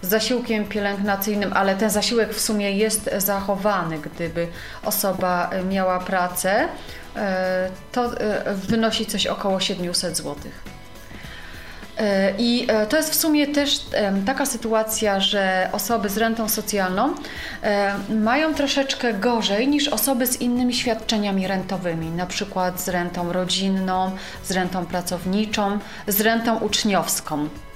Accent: native